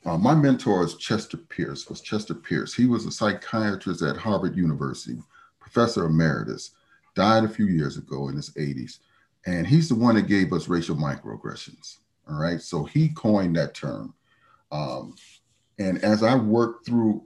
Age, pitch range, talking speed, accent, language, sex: 40-59, 90-120 Hz, 165 wpm, American, English, male